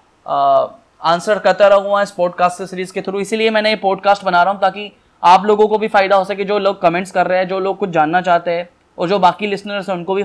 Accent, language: native, Hindi